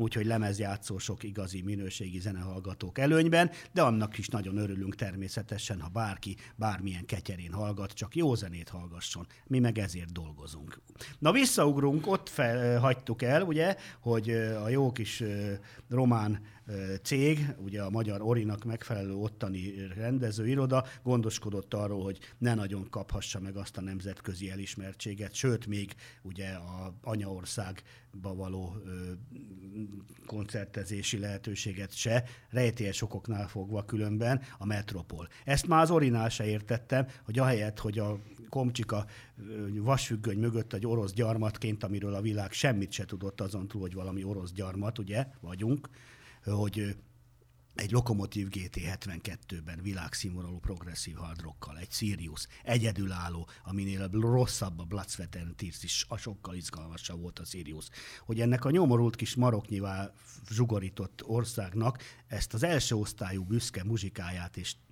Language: Hungarian